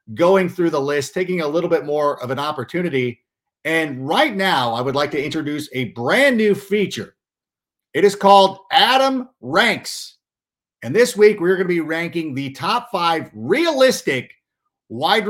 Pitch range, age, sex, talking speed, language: 140-205 Hz, 50-69, male, 165 wpm, English